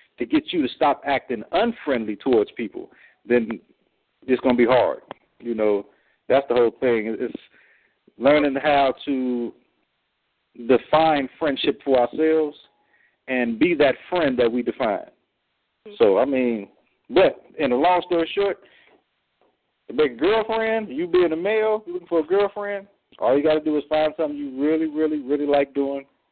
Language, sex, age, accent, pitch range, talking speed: English, male, 50-69, American, 125-200 Hz, 155 wpm